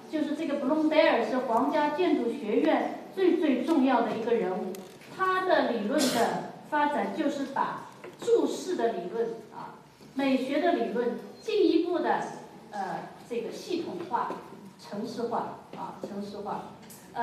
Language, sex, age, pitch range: Chinese, female, 30-49, 205-290 Hz